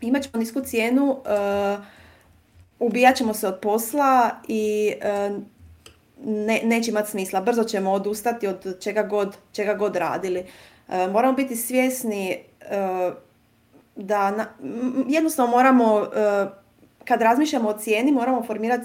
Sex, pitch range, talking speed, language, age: female, 195-235 Hz, 135 wpm, Croatian, 30-49